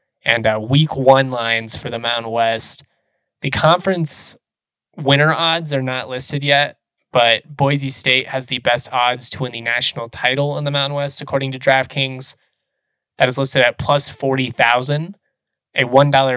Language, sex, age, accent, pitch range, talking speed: English, male, 20-39, American, 125-145 Hz, 155 wpm